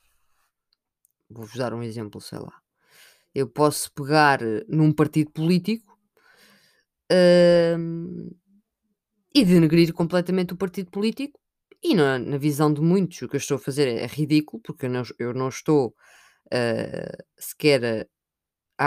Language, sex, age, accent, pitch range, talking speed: Portuguese, female, 20-39, Brazilian, 135-195 Hz, 120 wpm